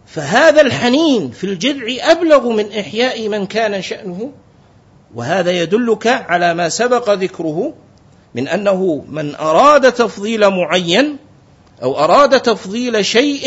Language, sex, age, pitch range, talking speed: Arabic, male, 50-69, 170-235 Hz, 115 wpm